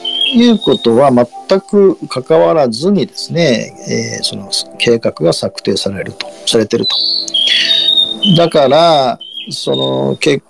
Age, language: 40-59, Japanese